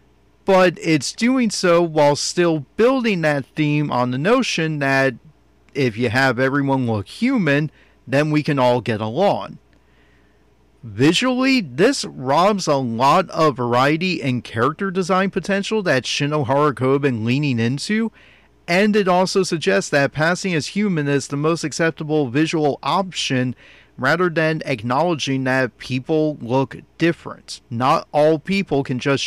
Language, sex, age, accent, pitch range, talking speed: English, male, 40-59, American, 130-165 Hz, 140 wpm